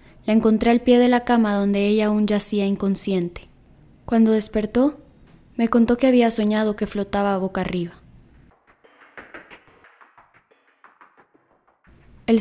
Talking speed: 120 wpm